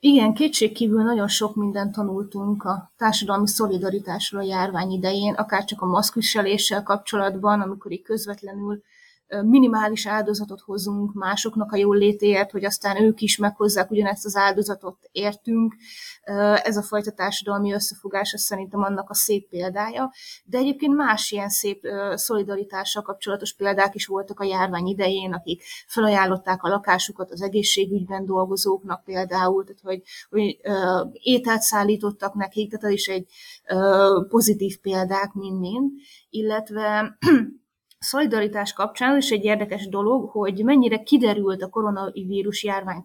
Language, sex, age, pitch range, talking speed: Hungarian, female, 20-39, 195-220 Hz, 130 wpm